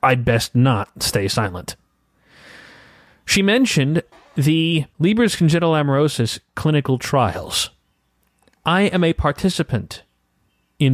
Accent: American